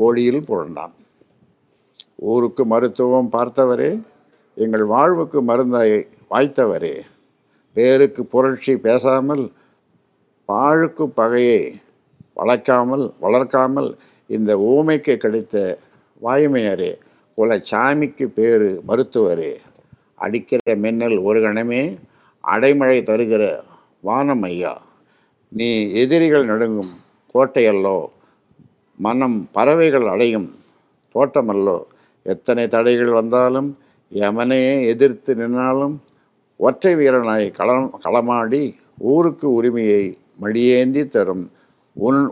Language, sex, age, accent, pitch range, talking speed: Tamil, male, 60-79, native, 115-140 Hz, 75 wpm